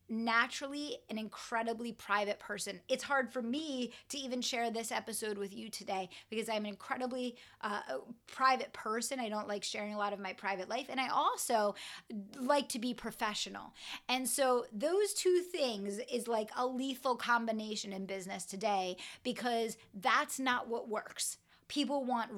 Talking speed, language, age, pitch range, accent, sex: 165 wpm, English, 30-49, 210-265 Hz, American, female